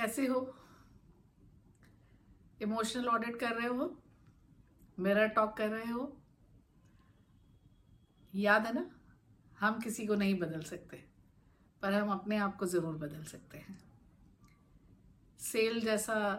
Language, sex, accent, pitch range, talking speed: Hindi, female, native, 180-225 Hz, 115 wpm